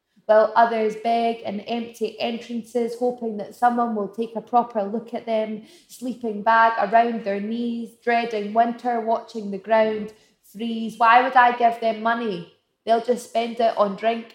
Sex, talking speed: female, 165 wpm